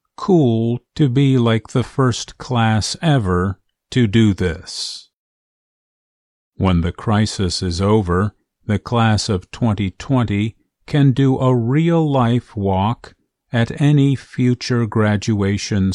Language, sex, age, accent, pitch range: Chinese, male, 50-69, American, 95-125 Hz